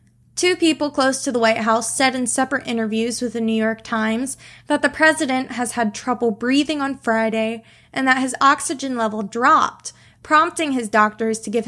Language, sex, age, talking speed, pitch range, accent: English, female, 20-39, 185 wpm, 220-255 Hz, American